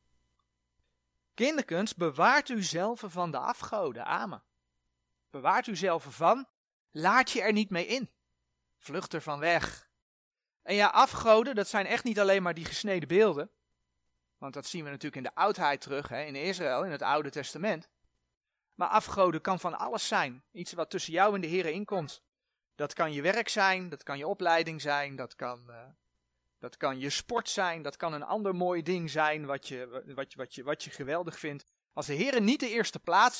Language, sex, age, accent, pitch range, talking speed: Dutch, male, 30-49, Dutch, 125-200 Hz, 185 wpm